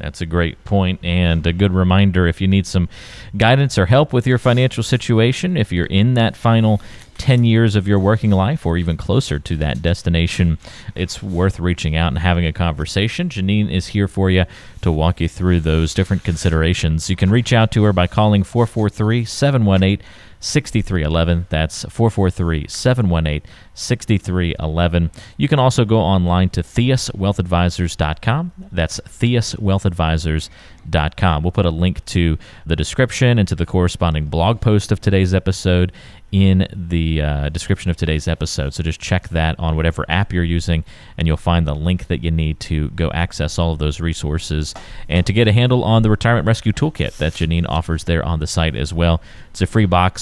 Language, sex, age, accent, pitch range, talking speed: English, male, 40-59, American, 85-105 Hz, 175 wpm